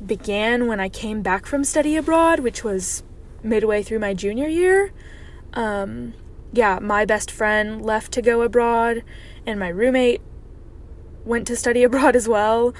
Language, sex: English, female